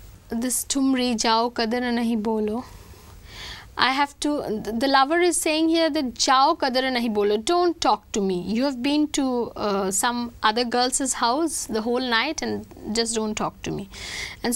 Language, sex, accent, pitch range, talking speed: English, female, Indian, 230-320 Hz, 165 wpm